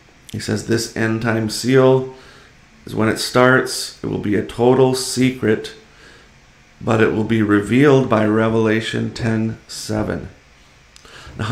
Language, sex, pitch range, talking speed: English, male, 110-125 Hz, 135 wpm